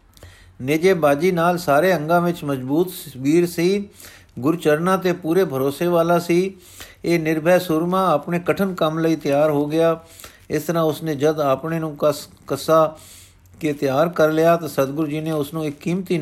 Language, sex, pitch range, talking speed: Punjabi, male, 140-170 Hz, 170 wpm